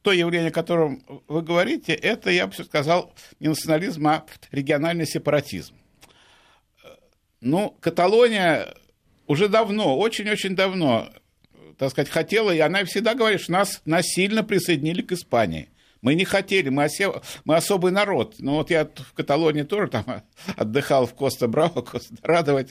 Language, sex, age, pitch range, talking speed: Russian, male, 50-69, 145-195 Hz, 145 wpm